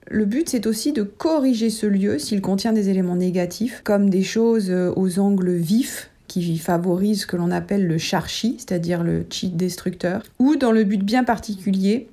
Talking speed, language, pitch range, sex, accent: 185 wpm, French, 185-235 Hz, female, French